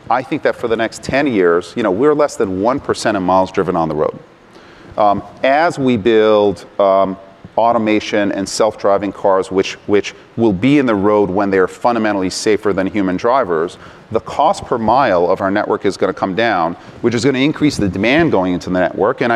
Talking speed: 215 wpm